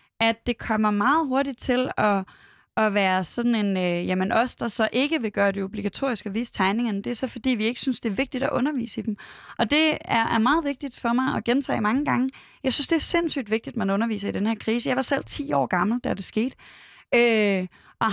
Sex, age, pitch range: female, 20-39, 200-245 Hz